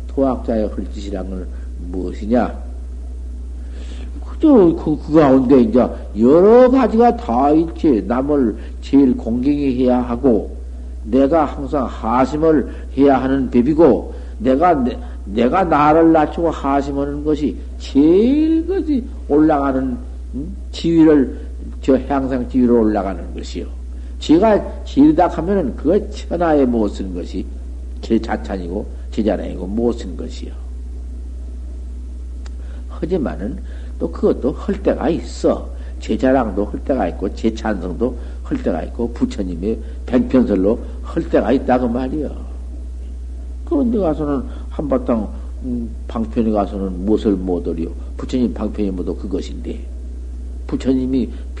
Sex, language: male, Korean